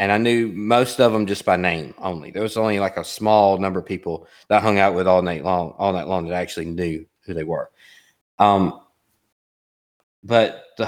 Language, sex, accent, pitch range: English, male, American, 95-125 Hz